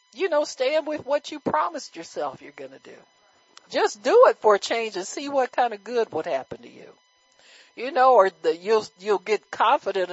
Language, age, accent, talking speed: English, 50-69, American, 205 wpm